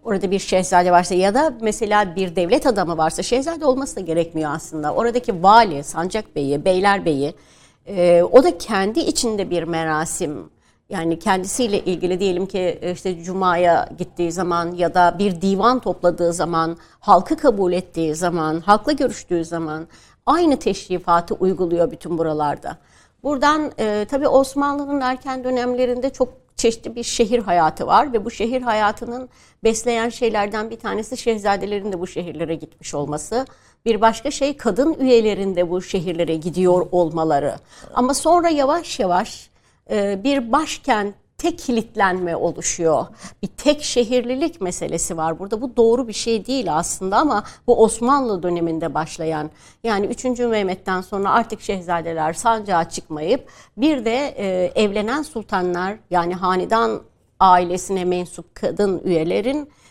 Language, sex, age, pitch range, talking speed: Turkish, female, 60-79, 175-240 Hz, 135 wpm